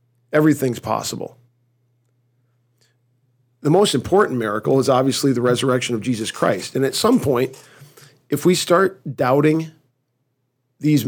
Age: 40-59